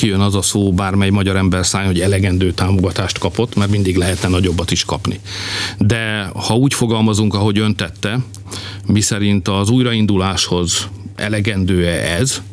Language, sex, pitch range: Hungarian, male, 95-110 Hz